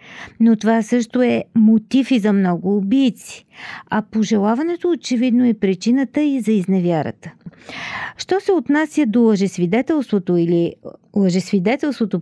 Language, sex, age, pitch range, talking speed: Bulgarian, female, 50-69, 195-275 Hz, 120 wpm